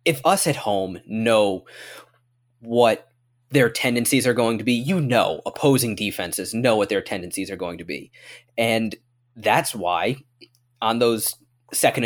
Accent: American